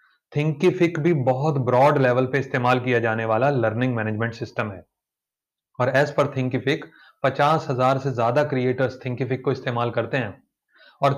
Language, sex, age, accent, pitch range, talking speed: Hindi, male, 30-49, native, 125-150 Hz, 135 wpm